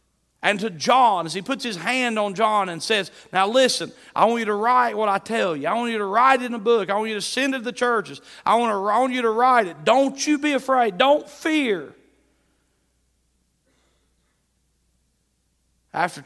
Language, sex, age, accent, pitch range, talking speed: English, male, 40-59, American, 125-200 Hz, 210 wpm